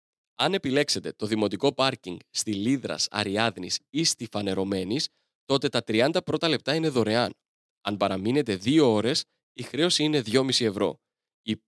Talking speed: 145 wpm